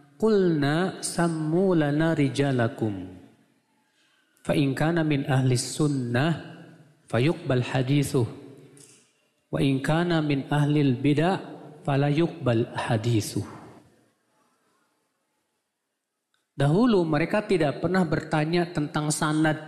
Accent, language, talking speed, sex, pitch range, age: native, Indonesian, 75 wpm, male, 135-170 Hz, 40-59